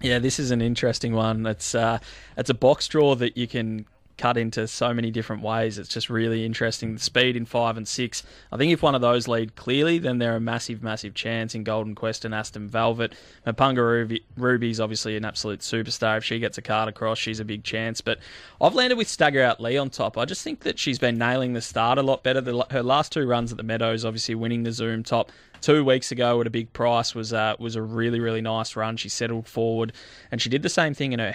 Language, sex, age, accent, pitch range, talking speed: English, male, 20-39, Australian, 110-125 Hz, 240 wpm